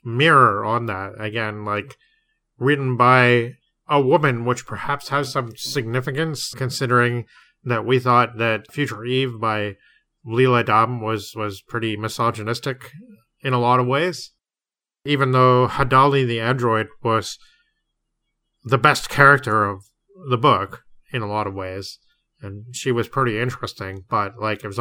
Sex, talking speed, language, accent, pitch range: male, 145 wpm, English, American, 115-140 Hz